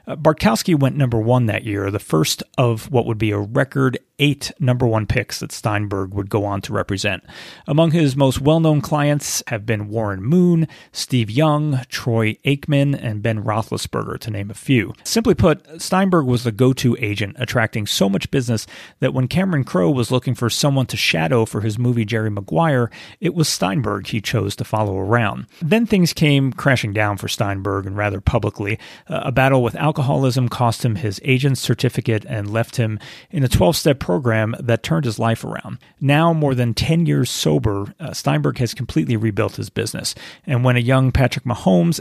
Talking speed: 185 wpm